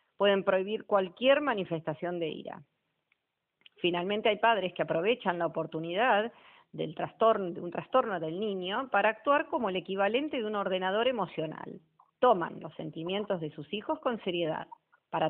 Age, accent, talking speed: 40-59, Argentinian, 145 wpm